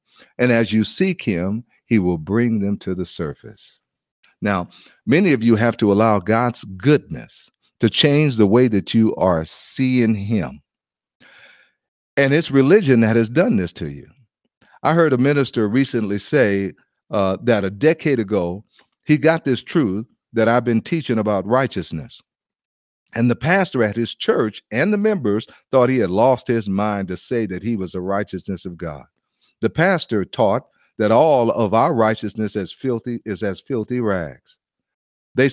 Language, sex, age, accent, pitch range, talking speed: English, male, 50-69, American, 95-125 Hz, 165 wpm